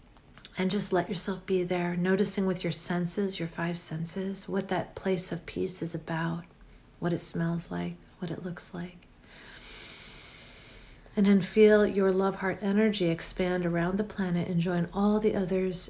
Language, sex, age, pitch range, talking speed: English, female, 40-59, 180-205 Hz, 165 wpm